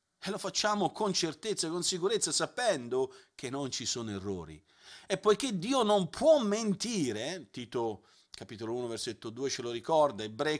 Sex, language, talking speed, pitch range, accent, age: male, Italian, 170 wpm, 125-185 Hz, native, 40-59